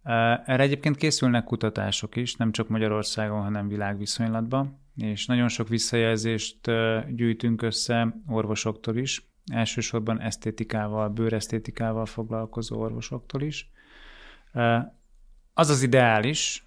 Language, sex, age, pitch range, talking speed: Hungarian, male, 20-39, 110-125 Hz, 95 wpm